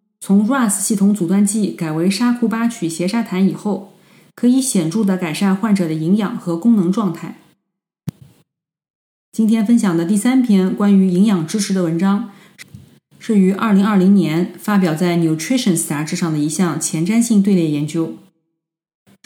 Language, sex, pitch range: Chinese, female, 170-210 Hz